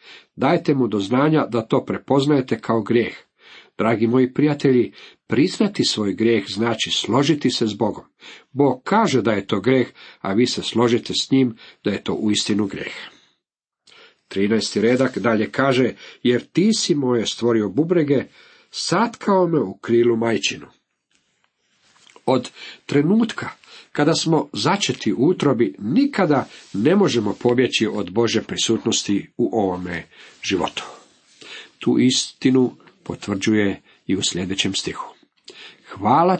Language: Croatian